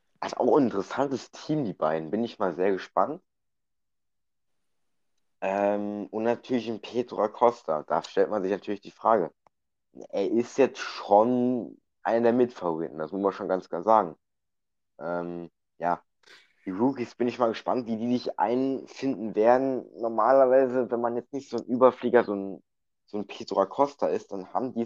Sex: male